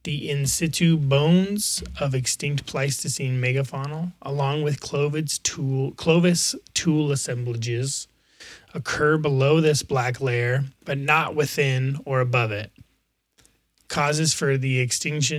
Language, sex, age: English, male, 30-49